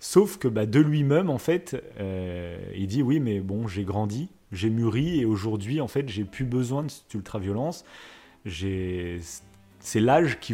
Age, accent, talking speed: 30-49, French, 180 wpm